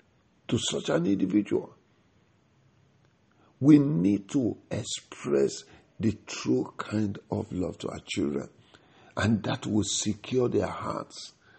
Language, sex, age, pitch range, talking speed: English, male, 50-69, 100-115 Hz, 115 wpm